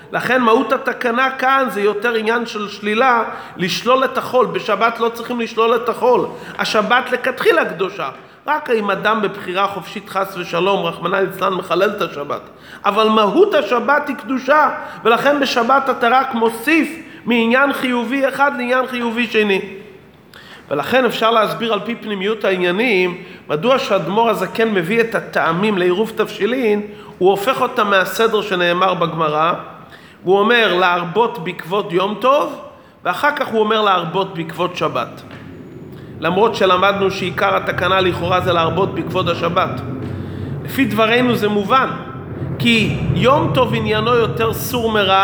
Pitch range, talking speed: 185-240 Hz, 135 wpm